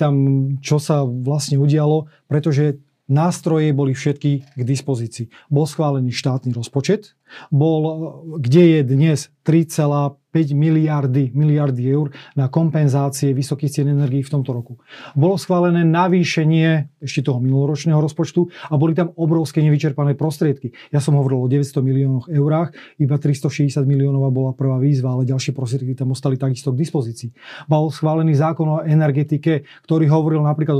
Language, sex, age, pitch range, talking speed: Slovak, male, 30-49, 140-160 Hz, 140 wpm